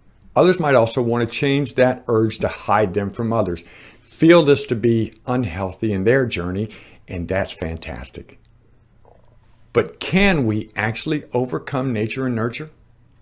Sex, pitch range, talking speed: male, 100-130 Hz, 145 wpm